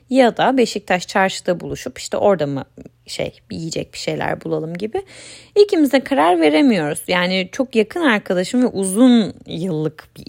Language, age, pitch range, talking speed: Turkish, 10-29, 185-255 Hz, 150 wpm